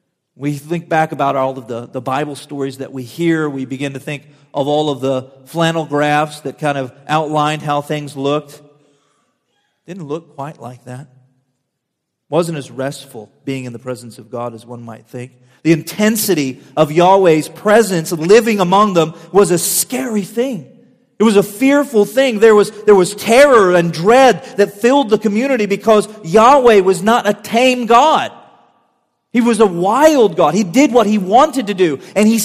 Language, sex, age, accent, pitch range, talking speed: English, male, 40-59, American, 150-225 Hz, 180 wpm